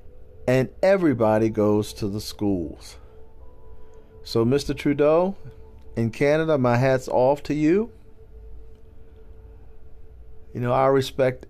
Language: English